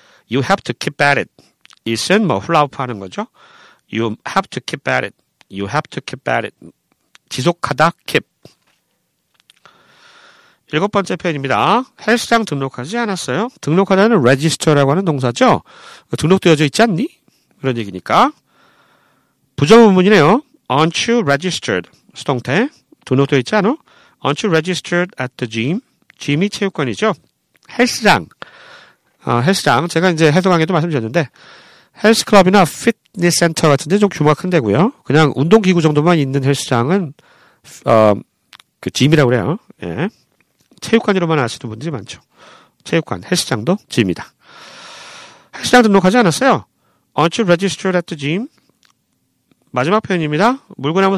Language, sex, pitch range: Korean, male, 140-210 Hz